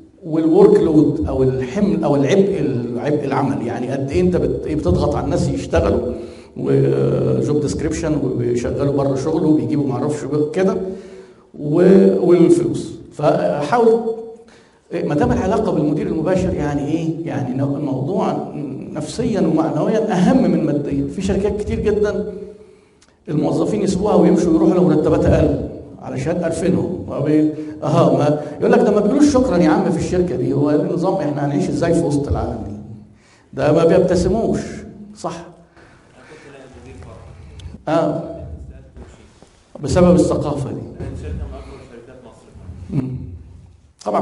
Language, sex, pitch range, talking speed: Arabic, male, 140-185 Hz, 110 wpm